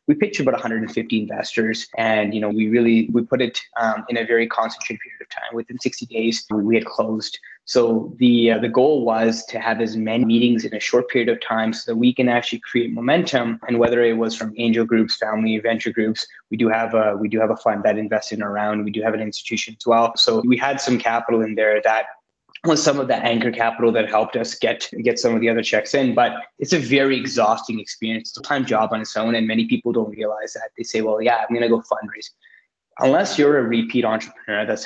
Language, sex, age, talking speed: English, male, 20-39, 240 wpm